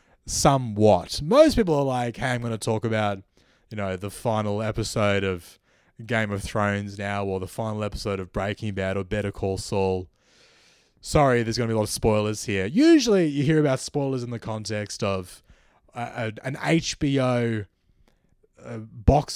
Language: English